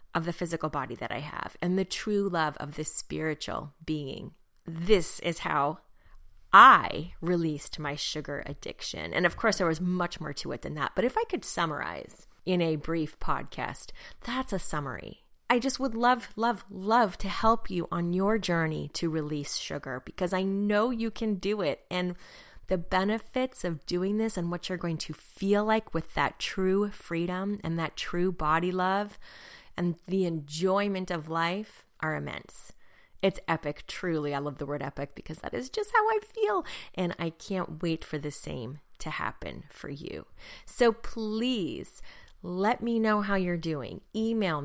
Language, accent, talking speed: English, American, 175 wpm